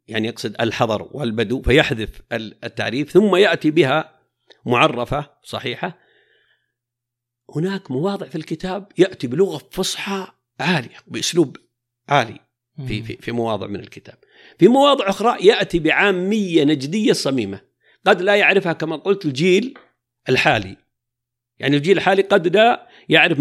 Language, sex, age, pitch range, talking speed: Arabic, male, 50-69, 115-155 Hz, 120 wpm